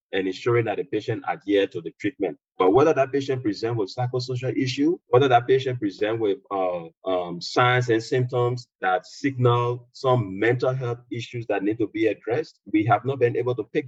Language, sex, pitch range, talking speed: English, male, 105-140 Hz, 195 wpm